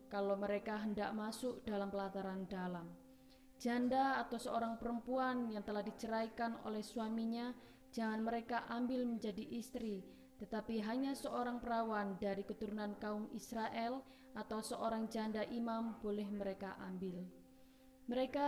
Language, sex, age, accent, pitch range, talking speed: Indonesian, female, 20-39, native, 210-255 Hz, 120 wpm